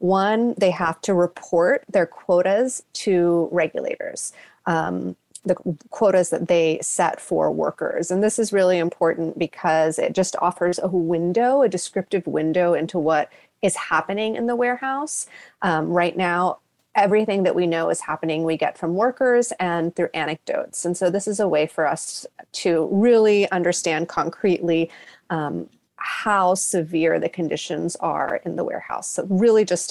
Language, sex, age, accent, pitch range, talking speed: English, female, 30-49, American, 165-210 Hz, 155 wpm